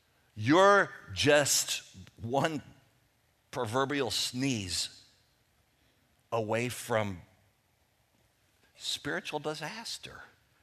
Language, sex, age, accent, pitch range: English, male, 50-69, American, 110-160 Hz